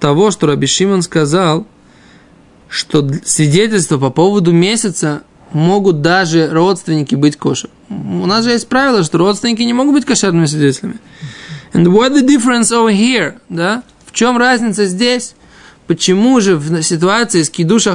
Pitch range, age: 160-215 Hz, 20-39